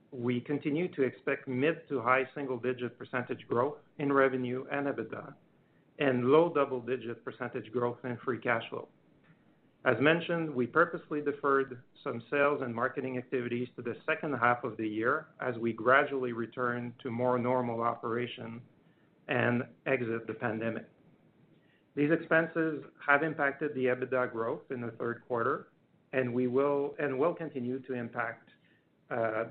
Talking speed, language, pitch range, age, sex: 140 wpm, English, 120-150 Hz, 50-69, male